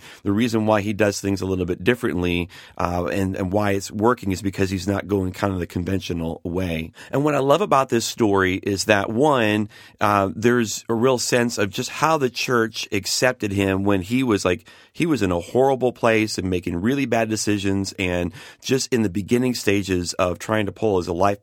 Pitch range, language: 95-115 Hz, English